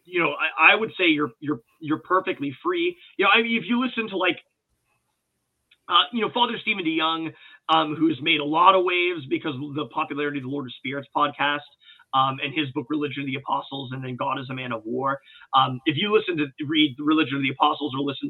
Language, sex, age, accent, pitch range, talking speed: English, male, 30-49, American, 145-190 Hz, 230 wpm